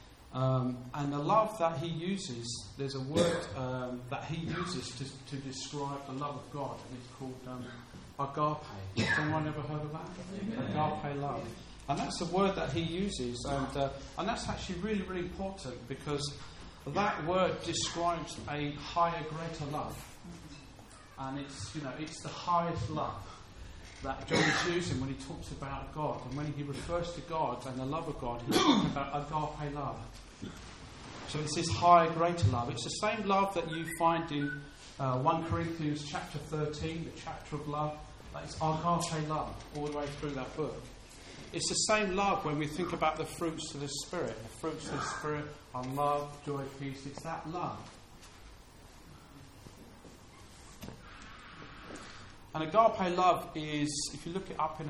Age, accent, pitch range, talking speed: 40-59, British, 135-165 Hz, 170 wpm